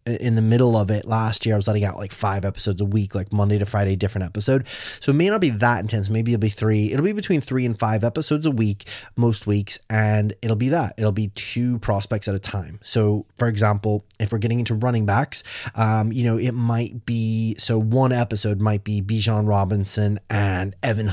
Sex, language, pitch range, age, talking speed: male, English, 105-120 Hz, 20-39, 225 wpm